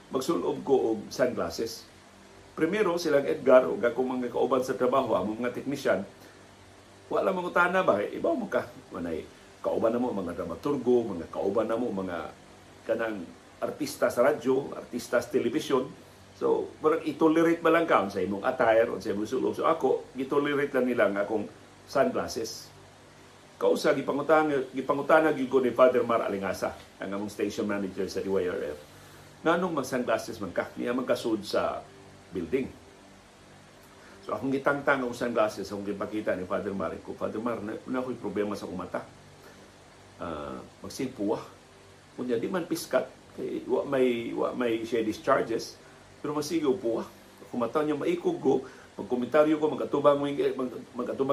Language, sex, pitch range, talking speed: Filipino, male, 115-150 Hz, 140 wpm